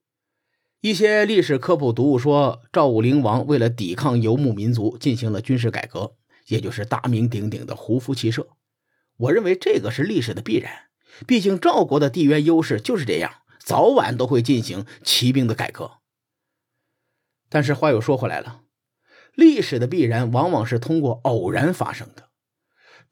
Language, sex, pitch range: Chinese, male, 120-160 Hz